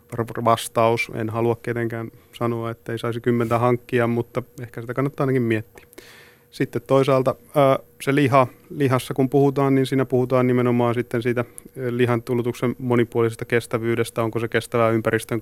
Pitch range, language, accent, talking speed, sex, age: 115-120 Hz, Finnish, native, 140 wpm, male, 30-49